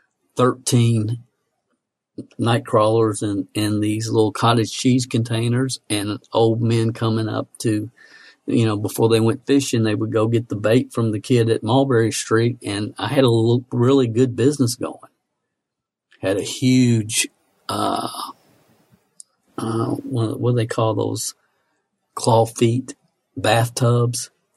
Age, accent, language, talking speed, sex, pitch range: 50-69, American, English, 145 wpm, male, 110-120 Hz